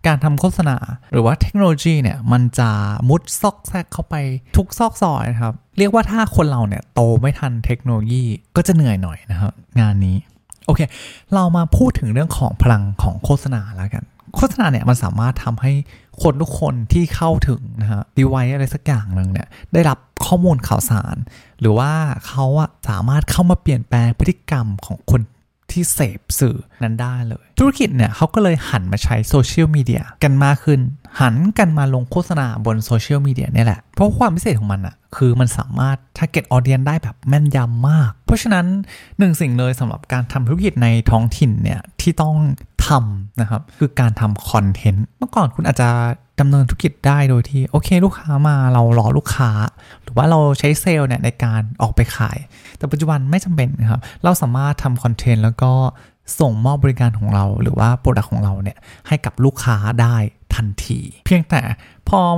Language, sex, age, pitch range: Thai, male, 20-39, 115-150 Hz